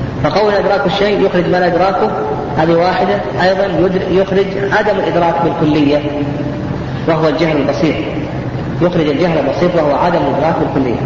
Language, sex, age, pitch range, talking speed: Arabic, female, 40-59, 150-205 Hz, 130 wpm